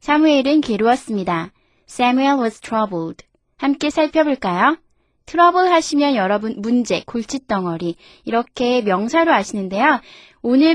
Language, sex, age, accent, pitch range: Korean, female, 20-39, native, 215-285 Hz